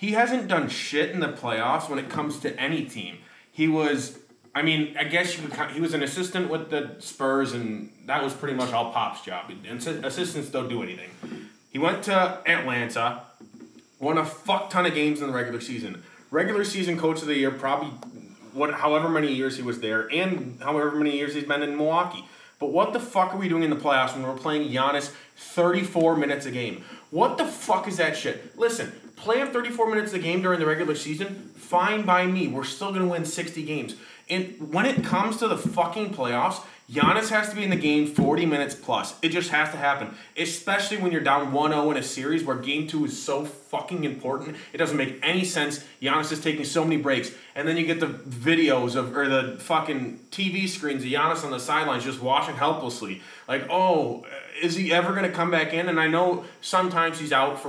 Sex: male